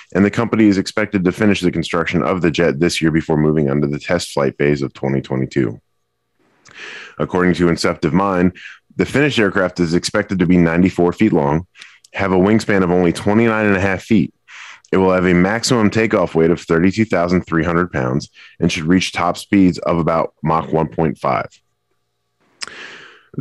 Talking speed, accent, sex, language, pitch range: 170 wpm, American, male, English, 80-100 Hz